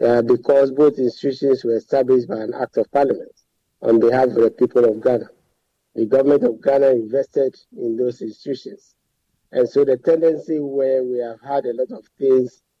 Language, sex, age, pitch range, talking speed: English, male, 50-69, 125-145 Hz, 180 wpm